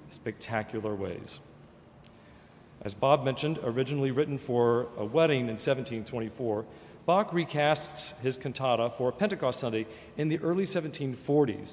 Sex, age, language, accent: male, 40-59, English, American